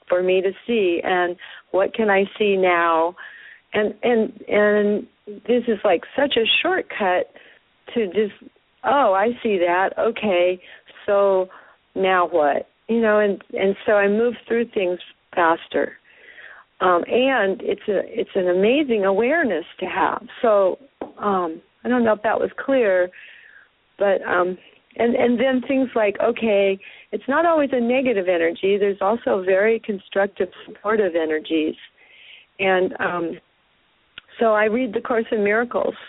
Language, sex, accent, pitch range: English, female, American, 190-235 Hz